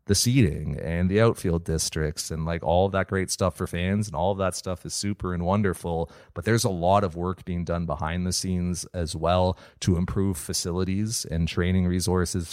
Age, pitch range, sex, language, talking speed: 30-49, 85-100 Hz, male, English, 205 wpm